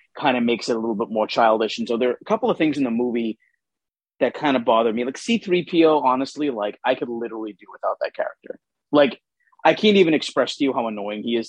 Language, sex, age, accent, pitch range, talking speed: English, male, 30-49, American, 120-180 Hz, 245 wpm